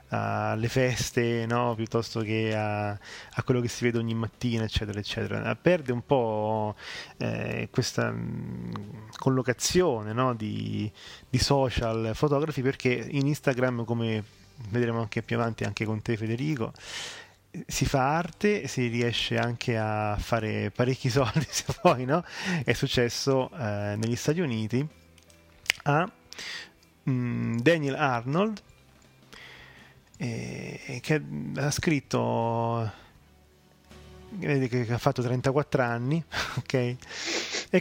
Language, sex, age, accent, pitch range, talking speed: Italian, male, 20-39, native, 110-135 Hz, 115 wpm